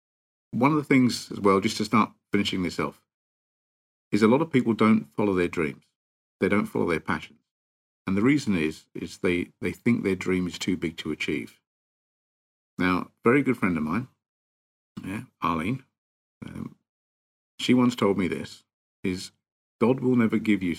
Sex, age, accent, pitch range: male, 50-69, British, 85-125 Hz